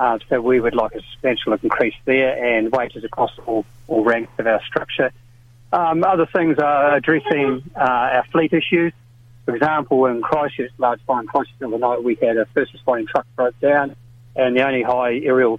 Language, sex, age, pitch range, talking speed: English, male, 40-59, 115-135 Hz, 185 wpm